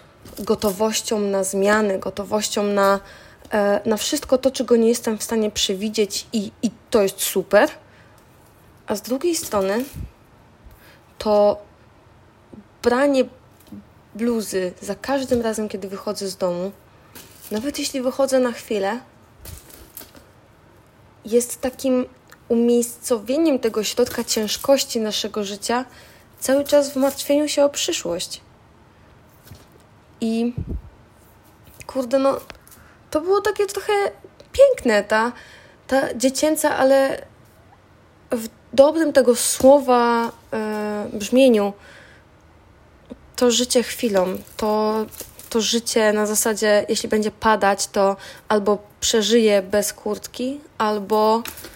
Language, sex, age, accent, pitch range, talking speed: Polish, female, 20-39, native, 200-250 Hz, 100 wpm